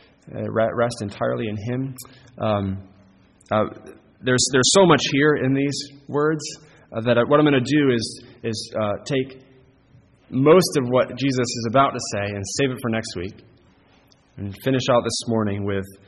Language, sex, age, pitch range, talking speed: English, male, 20-39, 105-130 Hz, 175 wpm